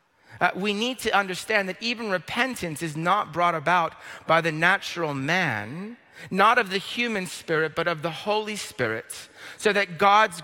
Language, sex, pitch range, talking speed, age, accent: English, male, 140-190 Hz, 165 wpm, 40-59, American